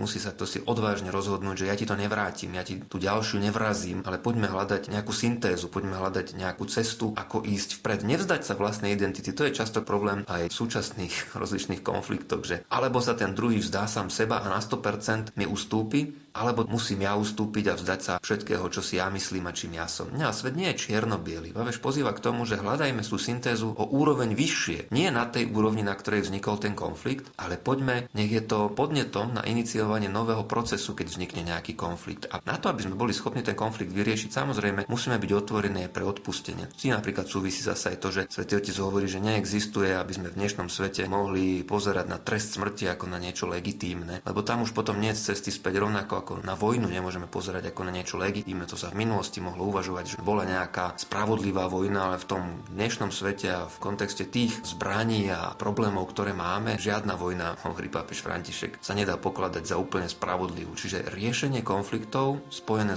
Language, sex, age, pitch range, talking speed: Slovak, male, 40-59, 95-110 Hz, 200 wpm